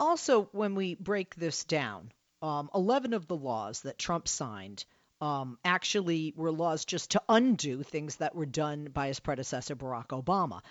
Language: English